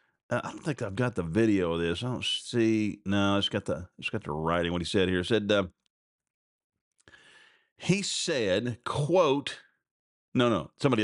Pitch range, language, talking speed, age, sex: 105-140 Hz, English, 180 wpm, 40-59, male